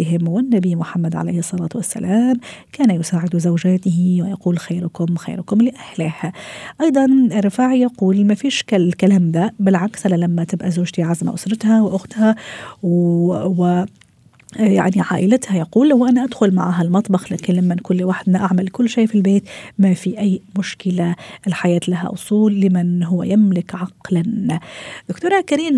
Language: Arabic